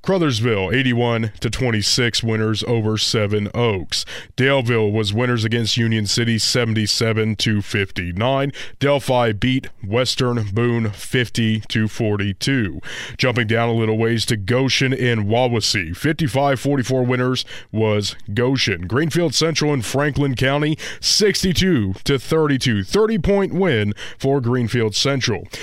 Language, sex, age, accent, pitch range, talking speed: English, male, 20-39, American, 110-135 Hz, 100 wpm